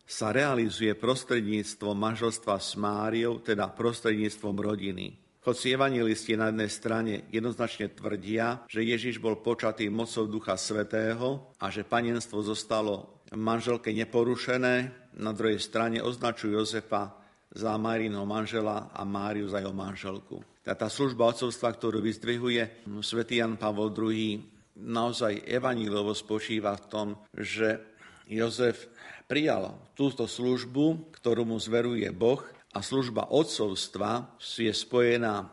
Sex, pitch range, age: male, 105-115 Hz, 50-69